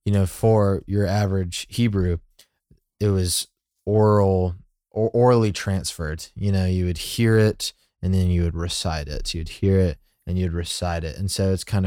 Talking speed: 170 wpm